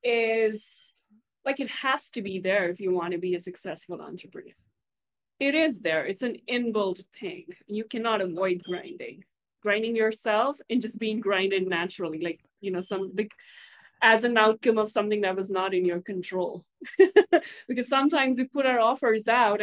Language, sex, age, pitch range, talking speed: English, female, 20-39, 190-230 Hz, 170 wpm